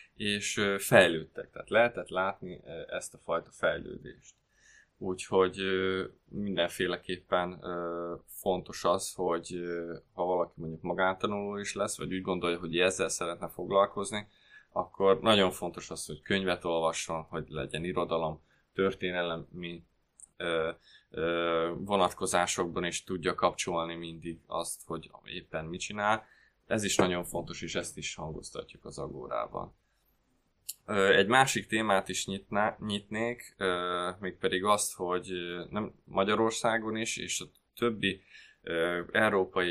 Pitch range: 85-100 Hz